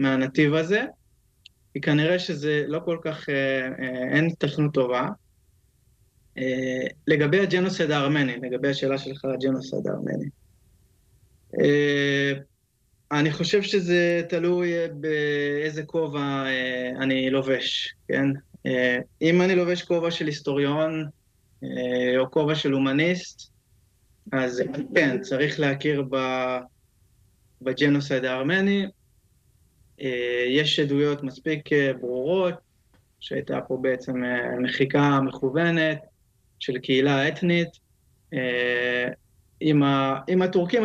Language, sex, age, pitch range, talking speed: Hebrew, male, 20-39, 125-155 Hz, 95 wpm